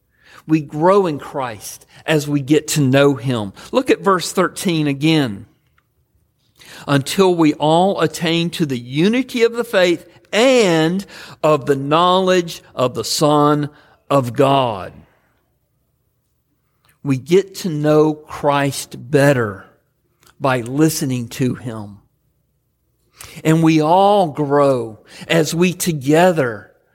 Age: 50-69